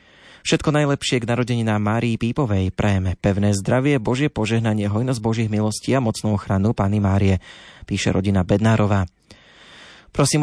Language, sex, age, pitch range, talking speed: Slovak, male, 30-49, 100-120 Hz, 140 wpm